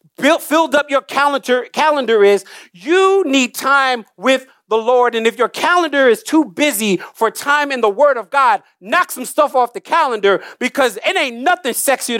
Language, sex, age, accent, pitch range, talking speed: English, male, 40-59, American, 195-280 Hz, 180 wpm